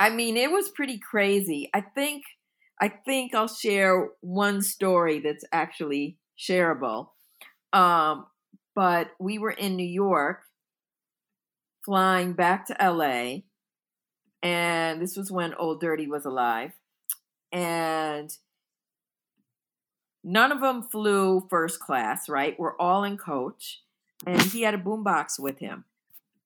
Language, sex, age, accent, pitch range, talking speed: English, female, 50-69, American, 175-220 Hz, 130 wpm